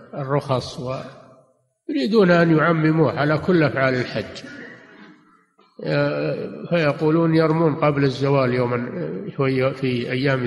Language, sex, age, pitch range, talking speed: Arabic, male, 50-69, 130-160 Hz, 85 wpm